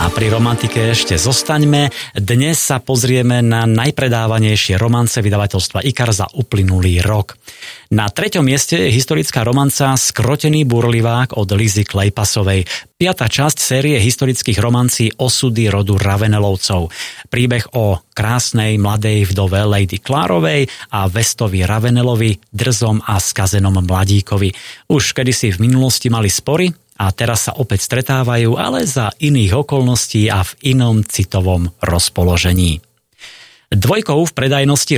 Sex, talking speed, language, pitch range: male, 125 wpm, Slovak, 105-130 Hz